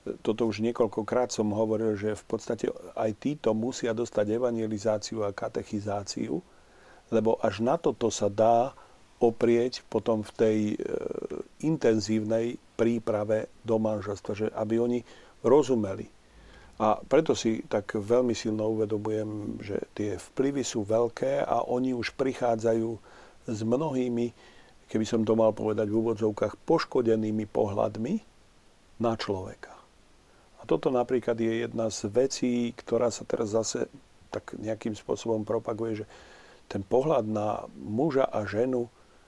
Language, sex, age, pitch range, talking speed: Slovak, male, 40-59, 110-120 Hz, 130 wpm